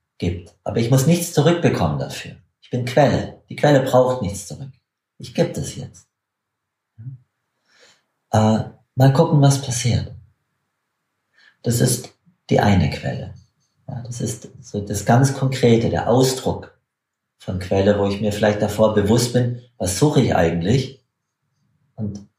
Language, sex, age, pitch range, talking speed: German, male, 40-59, 105-130 Hz, 140 wpm